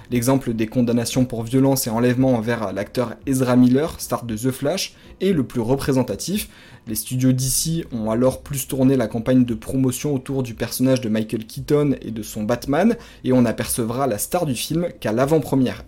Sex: male